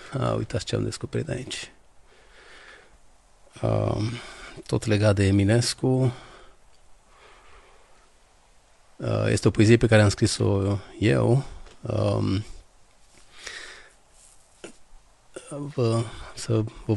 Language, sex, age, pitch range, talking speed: Romanian, male, 40-59, 100-115 Hz, 85 wpm